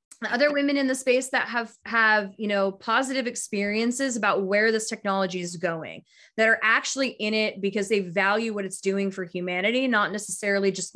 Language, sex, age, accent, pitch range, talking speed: English, female, 20-39, American, 200-260 Hz, 185 wpm